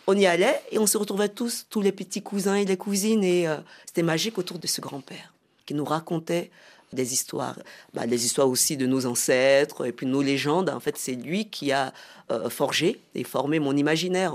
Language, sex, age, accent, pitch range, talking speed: French, female, 40-59, French, 135-175 Hz, 215 wpm